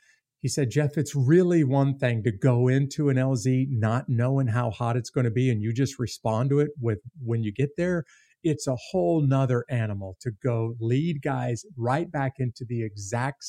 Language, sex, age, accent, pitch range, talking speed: English, male, 50-69, American, 115-140 Hz, 200 wpm